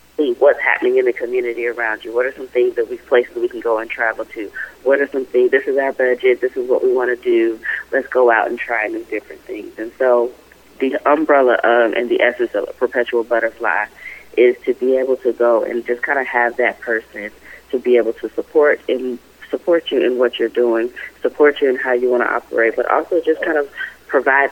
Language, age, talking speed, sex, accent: English, 30-49, 230 wpm, female, American